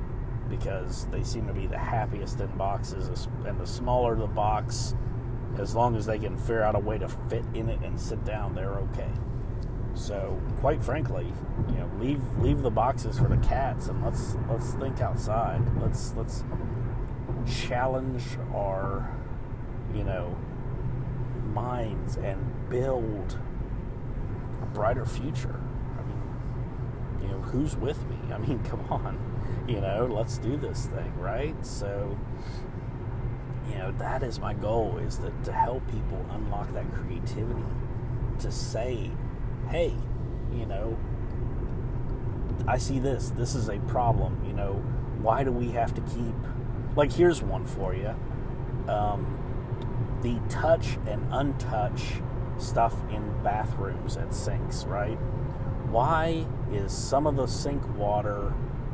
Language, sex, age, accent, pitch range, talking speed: English, male, 30-49, American, 115-125 Hz, 140 wpm